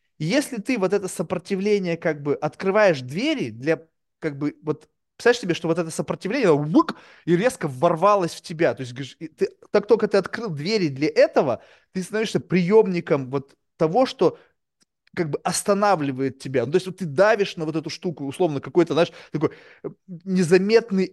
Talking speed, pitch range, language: 170 wpm, 145-195 Hz, Russian